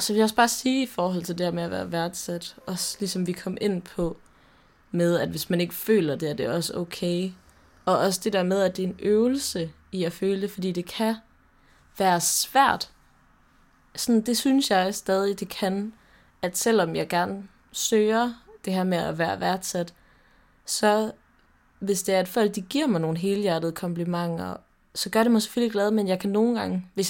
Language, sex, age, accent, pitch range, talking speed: Danish, female, 20-39, native, 175-210 Hz, 210 wpm